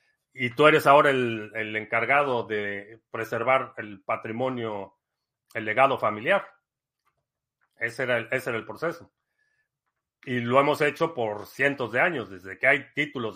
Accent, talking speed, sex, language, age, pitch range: Mexican, 150 wpm, male, Spanish, 40-59, 110-140 Hz